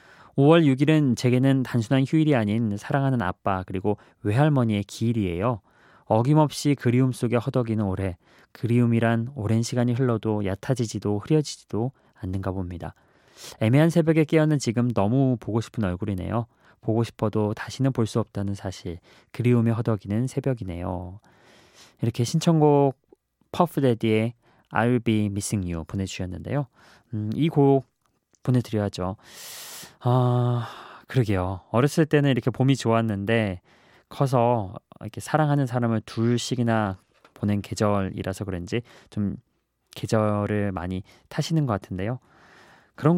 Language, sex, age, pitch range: Korean, male, 20-39, 100-135 Hz